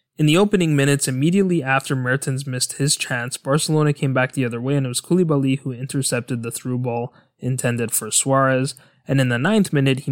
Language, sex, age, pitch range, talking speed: English, male, 20-39, 125-145 Hz, 200 wpm